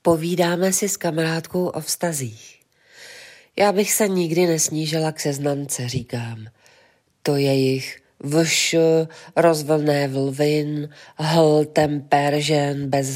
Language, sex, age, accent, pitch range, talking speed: Czech, female, 40-59, native, 140-165 Hz, 110 wpm